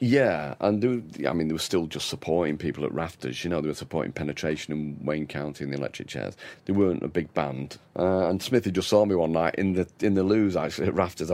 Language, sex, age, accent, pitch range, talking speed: English, male, 40-59, British, 80-95 Hz, 250 wpm